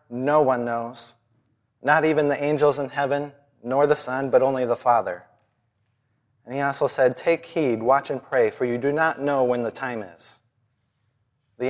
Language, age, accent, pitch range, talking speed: English, 30-49, American, 120-140 Hz, 180 wpm